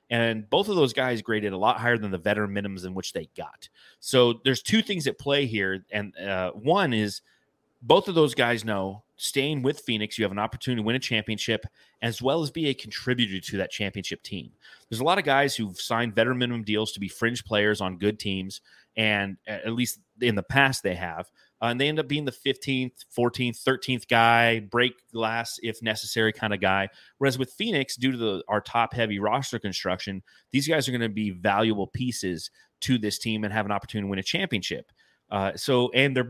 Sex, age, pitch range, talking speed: male, 30-49, 100-125 Hz, 215 wpm